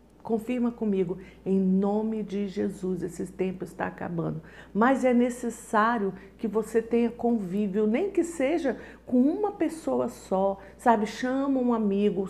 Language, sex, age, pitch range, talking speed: Portuguese, female, 50-69, 195-240 Hz, 135 wpm